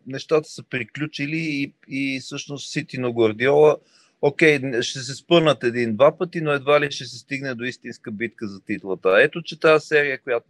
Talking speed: 175 wpm